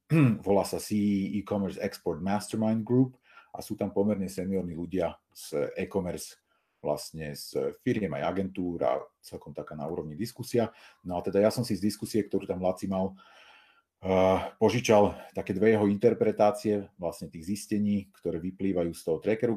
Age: 40-59